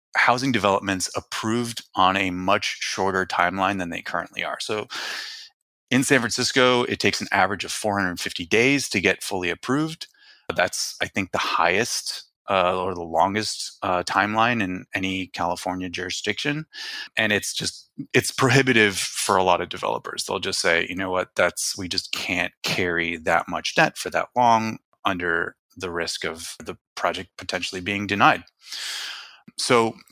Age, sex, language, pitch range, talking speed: 20-39, male, English, 90-120 Hz, 165 wpm